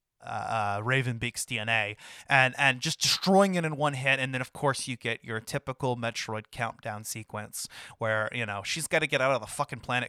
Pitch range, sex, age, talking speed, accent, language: 125-185 Hz, male, 30-49, 215 wpm, American, English